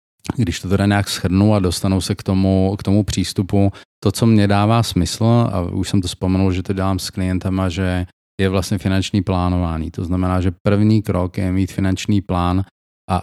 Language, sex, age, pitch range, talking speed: Slovak, male, 30-49, 90-100 Hz, 195 wpm